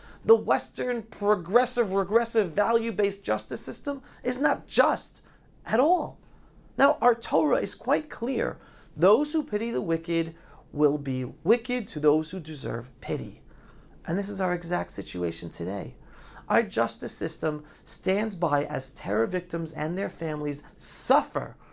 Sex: male